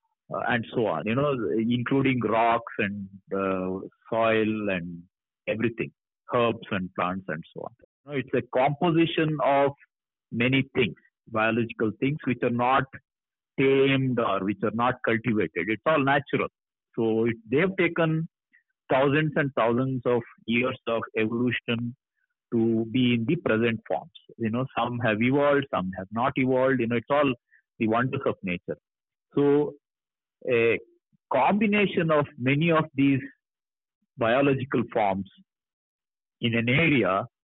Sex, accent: male, native